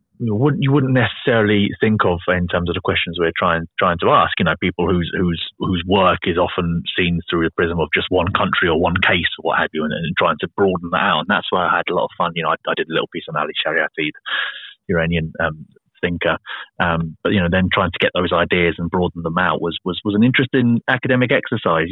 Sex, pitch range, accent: male, 85-105 Hz, British